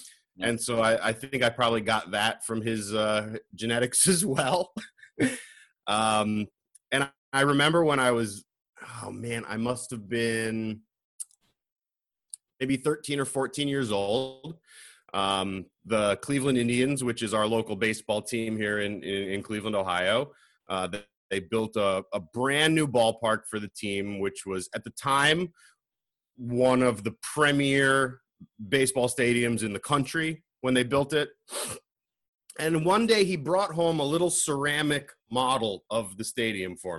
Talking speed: 150 wpm